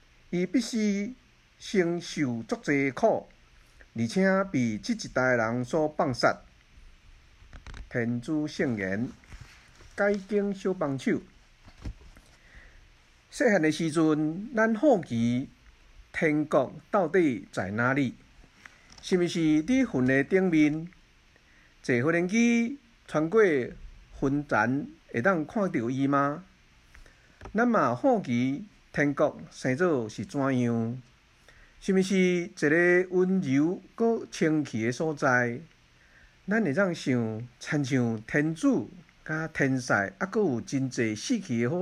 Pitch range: 115-180 Hz